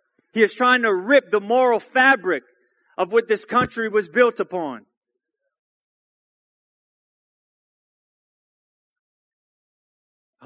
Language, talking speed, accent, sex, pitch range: English, 90 wpm, American, male, 190-280 Hz